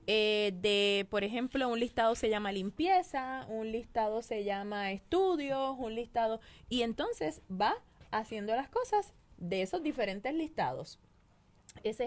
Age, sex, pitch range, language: 20-39, female, 200-270 Hz, Spanish